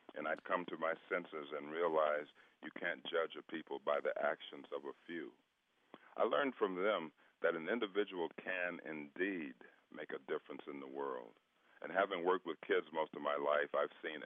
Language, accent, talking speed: English, American, 190 wpm